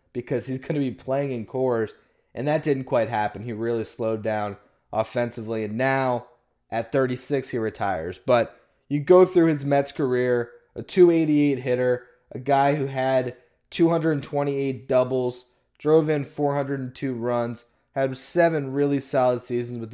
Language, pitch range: English, 120-140 Hz